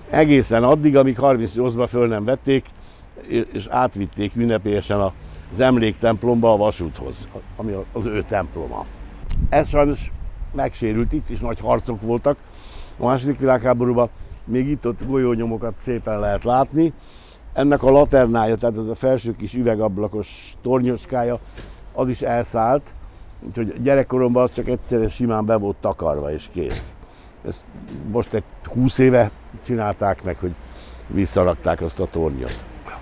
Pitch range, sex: 95-130 Hz, male